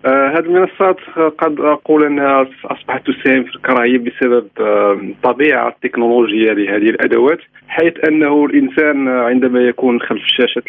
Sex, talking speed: male, 135 wpm